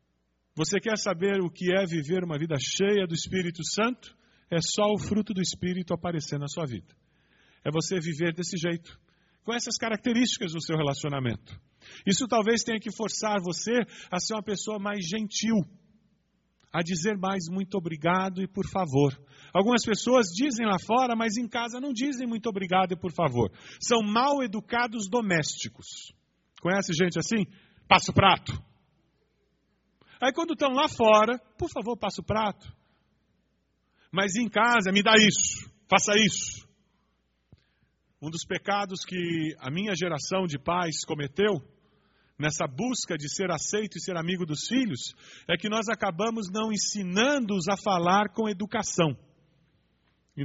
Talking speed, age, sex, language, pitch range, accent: 150 wpm, 40-59, male, Portuguese, 160-215 Hz, Brazilian